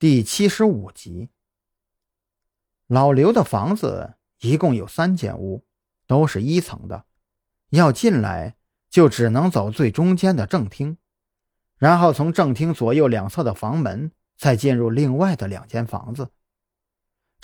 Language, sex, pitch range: Chinese, male, 100-150 Hz